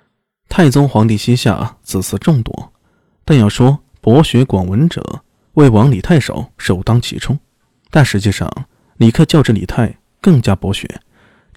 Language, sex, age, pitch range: Chinese, male, 20-39, 100-130 Hz